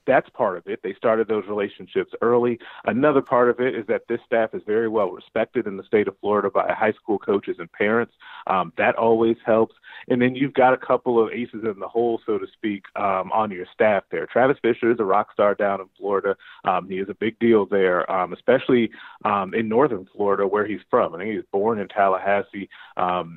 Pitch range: 100-140 Hz